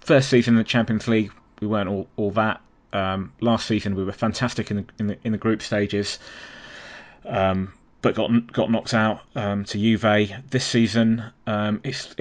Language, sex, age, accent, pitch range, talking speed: English, male, 20-39, British, 95-115 Hz, 185 wpm